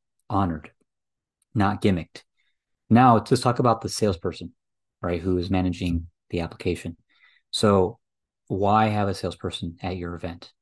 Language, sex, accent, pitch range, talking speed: English, male, American, 95-115 Hz, 130 wpm